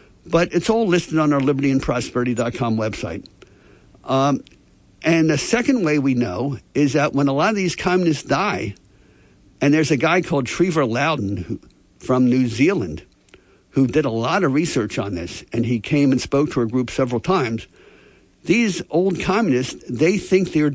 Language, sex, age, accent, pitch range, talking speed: English, male, 60-79, American, 130-170 Hz, 170 wpm